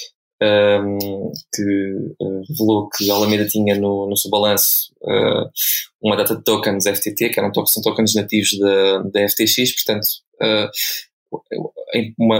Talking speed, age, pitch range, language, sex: 115 wpm, 20-39, 105-115 Hz, Portuguese, male